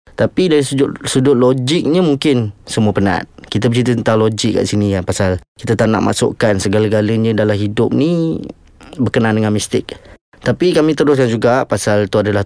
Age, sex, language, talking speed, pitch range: 20-39, male, Malay, 165 wpm, 100-125 Hz